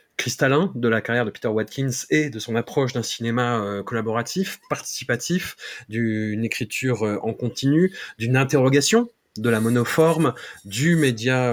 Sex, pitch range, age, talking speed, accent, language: male, 105-140 Hz, 30-49, 135 wpm, French, French